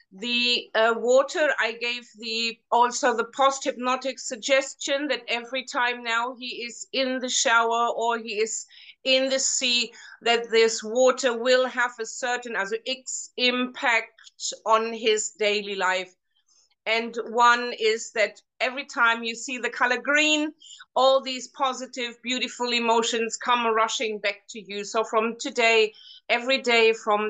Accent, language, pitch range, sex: German, English, 205-245 Hz, female